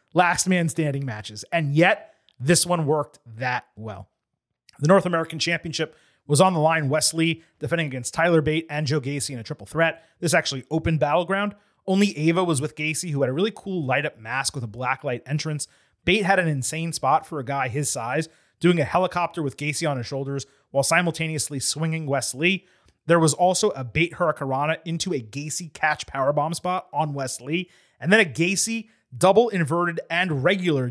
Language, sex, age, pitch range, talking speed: English, male, 30-49, 140-175 Hz, 190 wpm